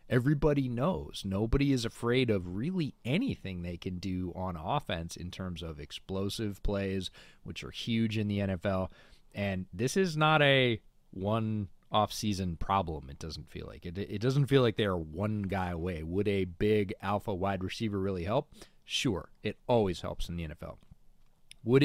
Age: 30-49